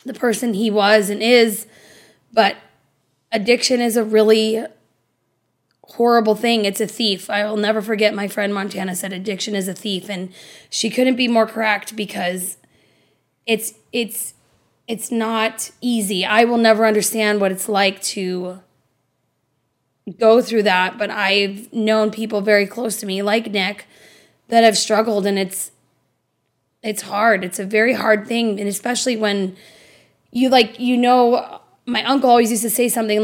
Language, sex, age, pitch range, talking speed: English, female, 20-39, 200-230 Hz, 155 wpm